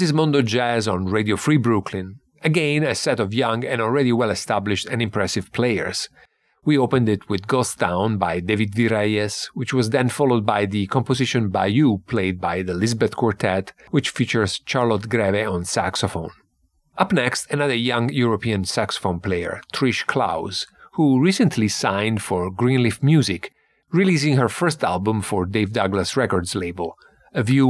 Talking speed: 155 wpm